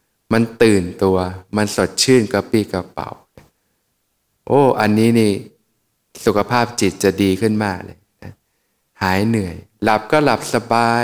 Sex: male